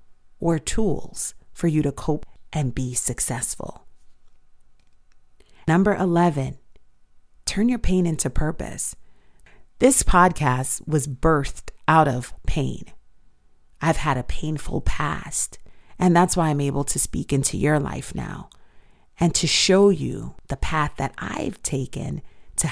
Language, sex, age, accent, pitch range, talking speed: English, female, 40-59, American, 135-180 Hz, 130 wpm